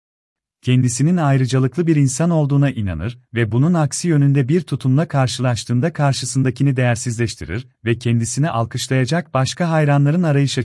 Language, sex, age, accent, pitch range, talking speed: Turkish, male, 40-59, native, 115-150 Hz, 120 wpm